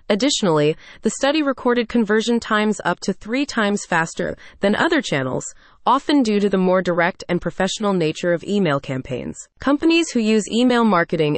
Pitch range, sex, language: 170-235 Hz, female, English